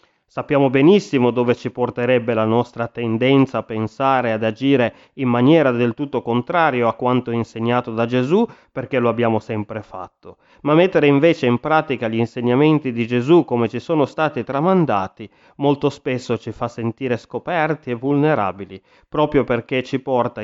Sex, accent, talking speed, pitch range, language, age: male, native, 160 wpm, 115-135 Hz, Italian, 30-49